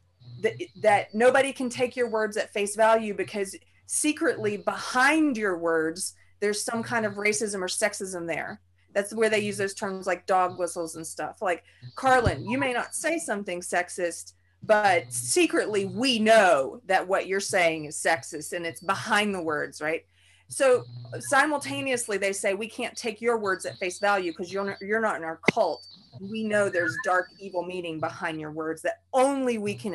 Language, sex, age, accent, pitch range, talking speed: English, female, 30-49, American, 175-235 Hz, 180 wpm